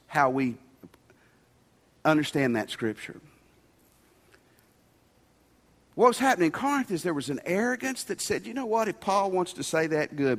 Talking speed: 155 wpm